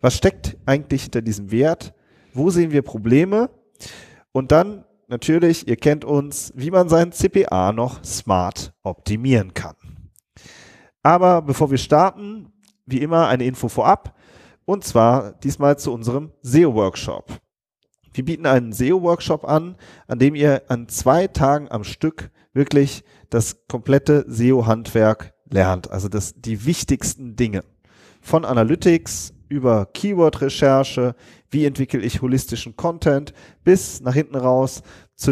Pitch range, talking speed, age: 115-155 Hz, 130 wpm, 30-49